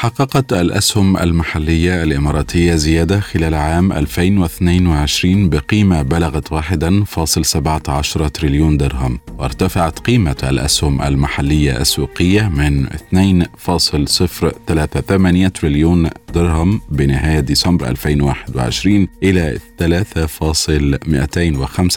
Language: Arabic